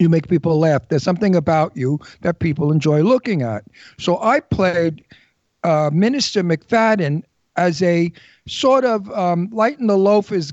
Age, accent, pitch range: 60-79, American, 145-190 Hz